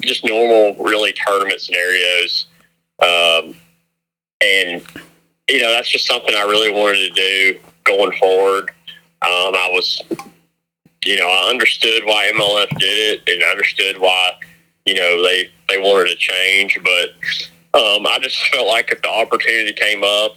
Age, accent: 30-49, American